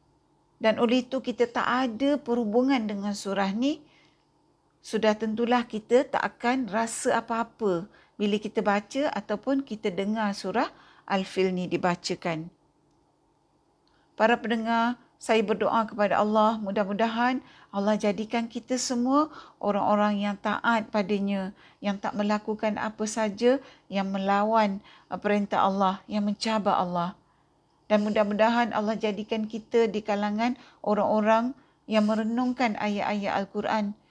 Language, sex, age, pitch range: Malay, female, 50-69, 200-235 Hz